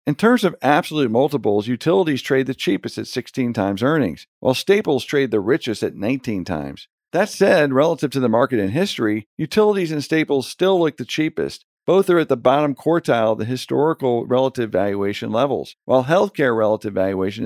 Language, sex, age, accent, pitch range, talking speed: English, male, 50-69, American, 115-155 Hz, 180 wpm